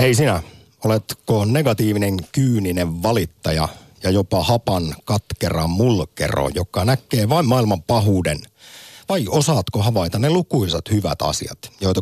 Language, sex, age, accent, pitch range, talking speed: Finnish, male, 50-69, native, 90-125 Hz, 120 wpm